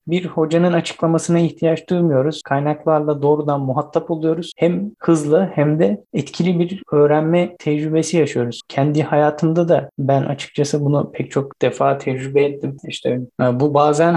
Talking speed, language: 135 wpm, Turkish